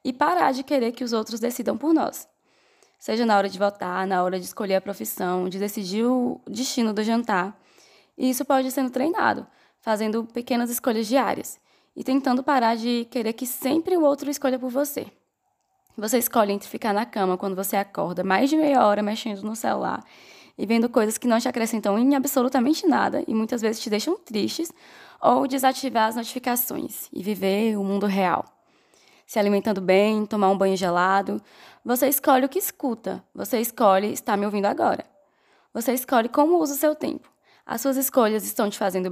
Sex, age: female, 10-29